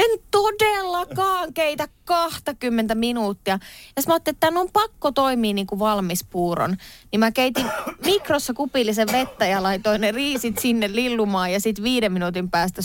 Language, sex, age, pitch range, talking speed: Finnish, female, 20-39, 185-260 Hz, 165 wpm